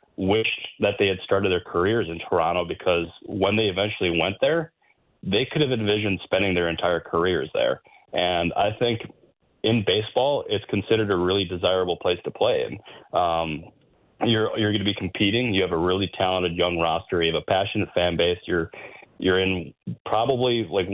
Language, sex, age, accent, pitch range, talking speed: English, male, 20-39, American, 85-100 Hz, 180 wpm